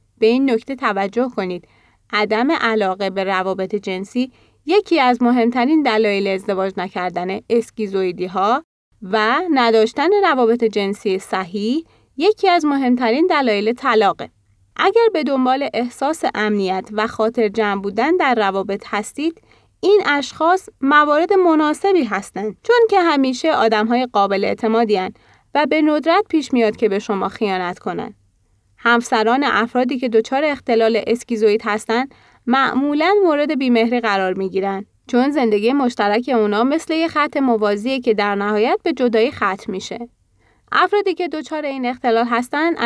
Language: Arabic